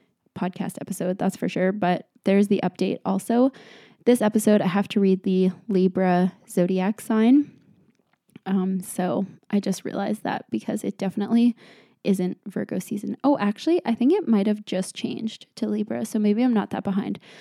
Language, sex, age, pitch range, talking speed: English, female, 20-39, 190-225 Hz, 170 wpm